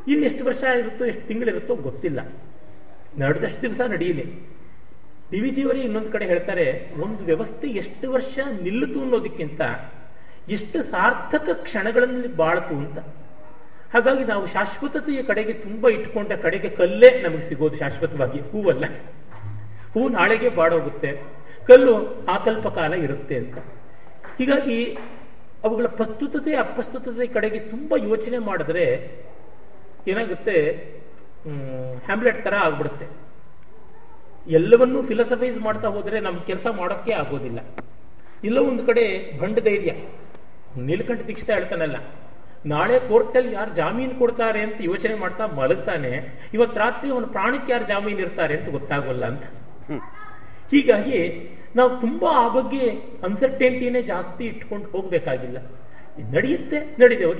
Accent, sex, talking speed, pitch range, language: native, male, 110 wpm, 165-250 Hz, Kannada